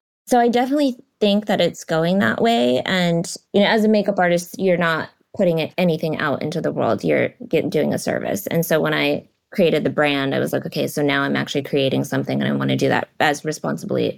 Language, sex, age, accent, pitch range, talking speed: English, female, 20-39, American, 145-185 Hz, 230 wpm